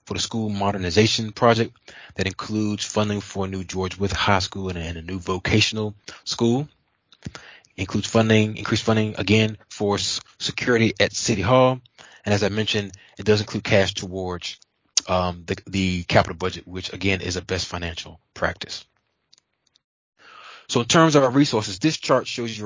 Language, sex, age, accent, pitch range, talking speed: English, male, 20-39, American, 95-115 Hz, 160 wpm